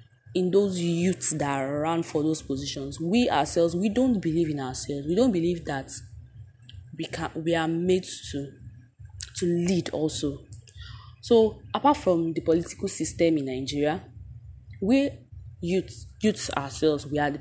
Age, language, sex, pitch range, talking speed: 20-39, English, female, 120-170 Hz, 150 wpm